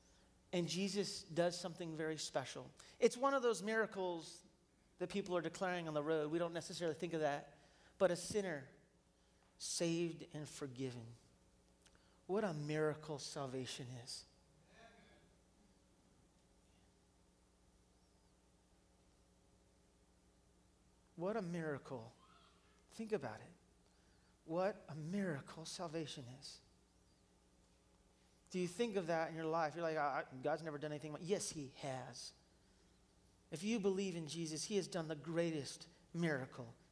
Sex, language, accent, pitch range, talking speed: male, English, American, 140-195 Hz, 120 wpm